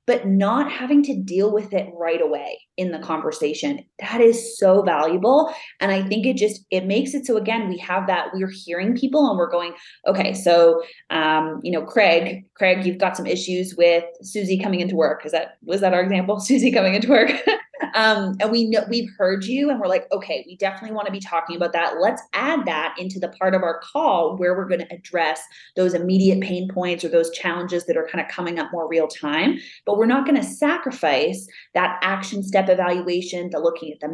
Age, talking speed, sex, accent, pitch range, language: 20-39, 220 wpm, female, American, 165-210 Hz, English